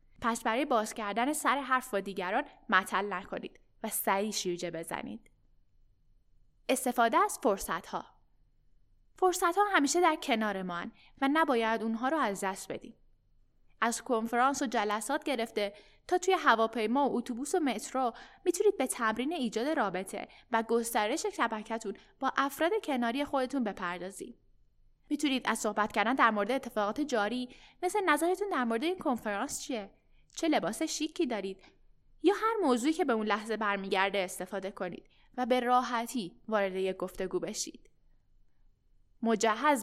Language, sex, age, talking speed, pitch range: Persian, female, 10-29, 135 wpm, 210-280 Hz